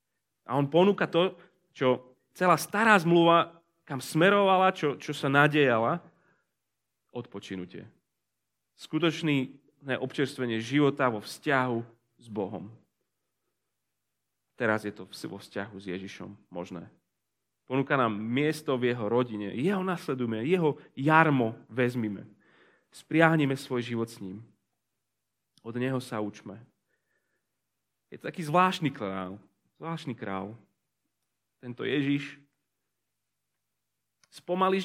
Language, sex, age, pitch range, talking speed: Slovak, male, 30-49, 110-160 Hz, 105 wpm